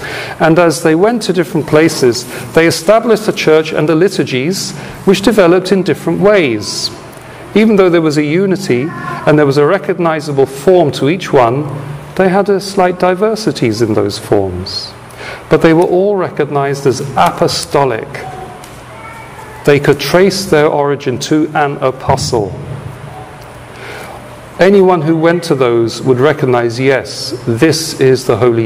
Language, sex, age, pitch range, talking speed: English, male, 40-59, 120-165 Hz, 145 wpm